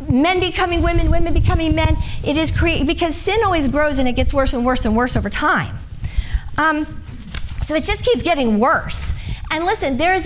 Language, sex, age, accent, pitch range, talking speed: English, female, 40-59, American, 260-335 Hz, 200 wpm